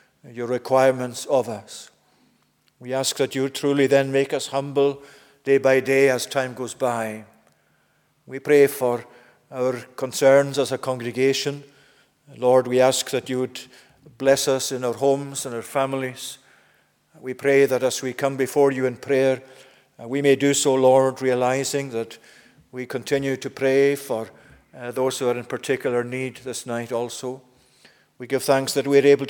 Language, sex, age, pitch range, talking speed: English, male, 50-69, 130-140 Hz, 165 wpm